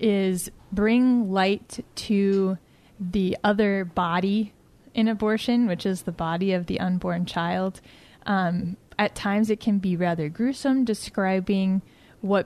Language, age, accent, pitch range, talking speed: English, 20-39, American, 190-220 Hz, 130 wpm